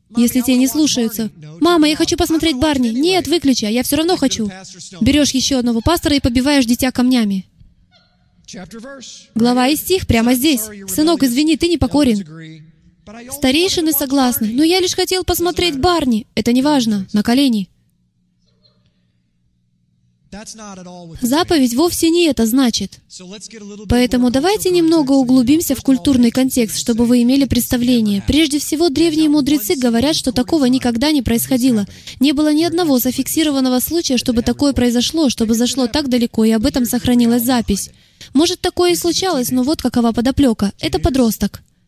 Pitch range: 220-300 Hz